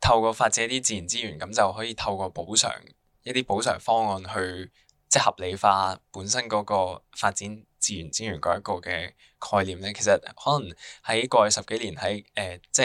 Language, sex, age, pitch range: Chinese, male, 10-29, 95-115 Hz